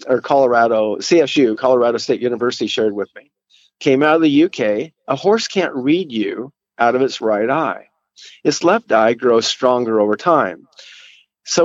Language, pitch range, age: English, 120-165 Hz, 50-69